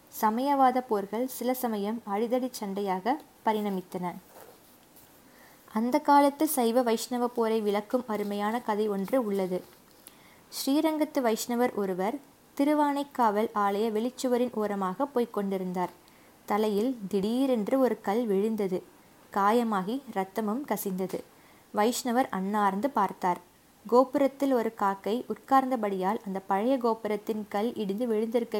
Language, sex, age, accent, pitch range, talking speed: Tamil, female, 20-39, native, 195-250 Hz, 95 wpm